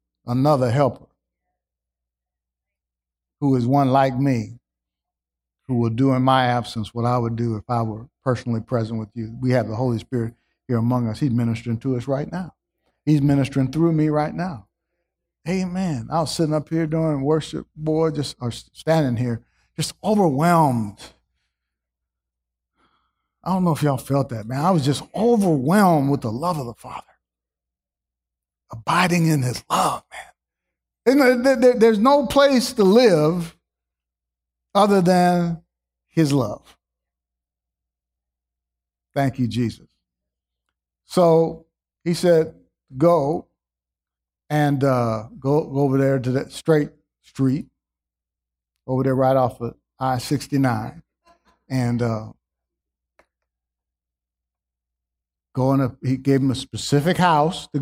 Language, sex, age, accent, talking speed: English, male, 50-69, American, 130 wpm